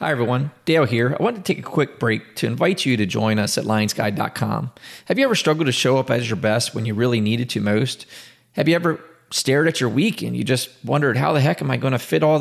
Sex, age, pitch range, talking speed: male, 30-49, 115-155 Hz, 265 wpm